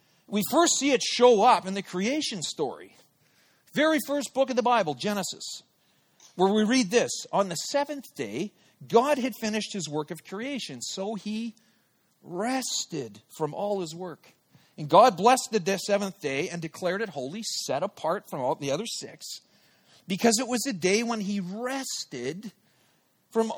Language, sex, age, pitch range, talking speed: English, male, 40-59, 185-250 Hz, 165 wpm